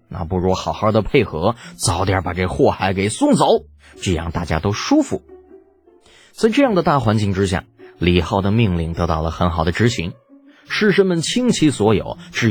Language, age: Chinese, 30-49